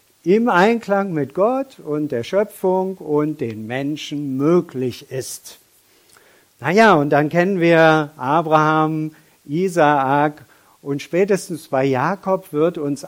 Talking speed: 115 wpm